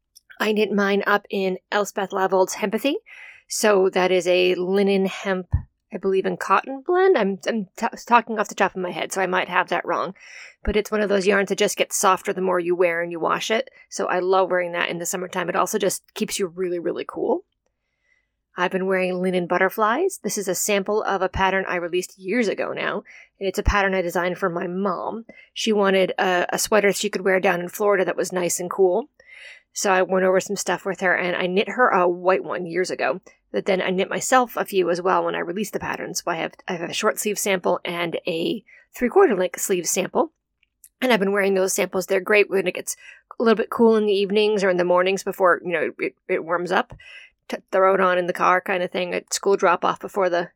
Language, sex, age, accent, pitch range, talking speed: English, female, 30-49, American, 185-210 Hz, 235 wpm